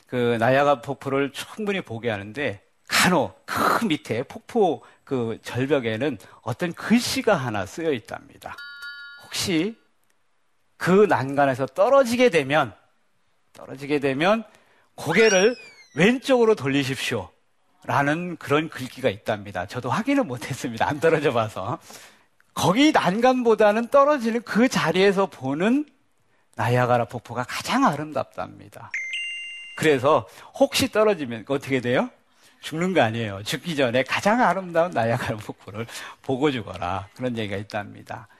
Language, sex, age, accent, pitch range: Korean, male, 40-59, native, 120-195 Hz